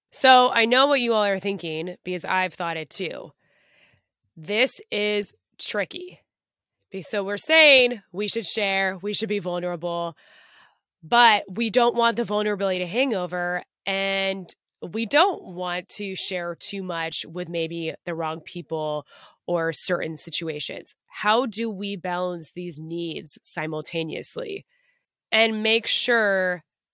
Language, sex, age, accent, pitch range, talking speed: English, female, 20-39, American, 170-220 Hz, 135 wpm